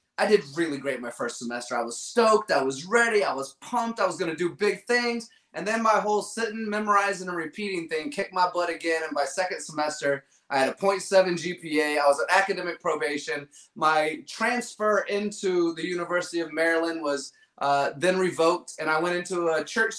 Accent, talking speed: American, 200 wpm